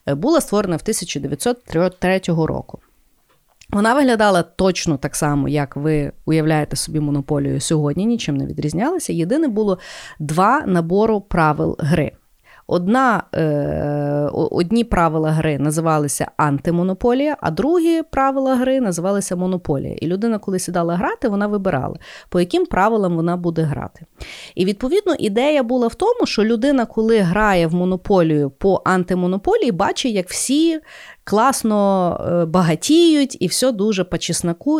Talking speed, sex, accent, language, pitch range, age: 130 wpm, female, native, Ukrainian, 165-255 Hz, 30-49